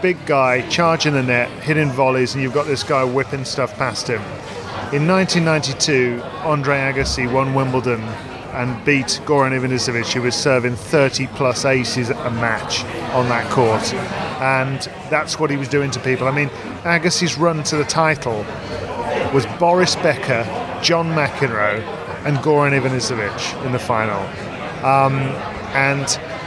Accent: British